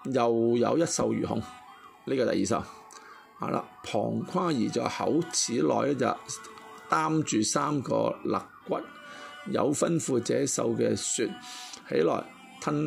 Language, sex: Chinese, male